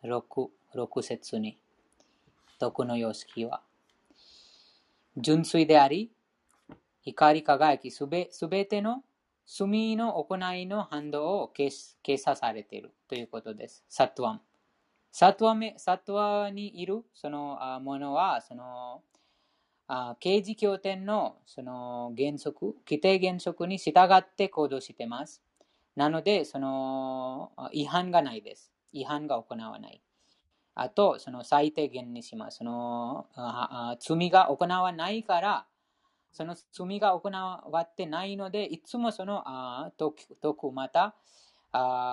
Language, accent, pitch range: Japanese, Indian, 135-195 Hz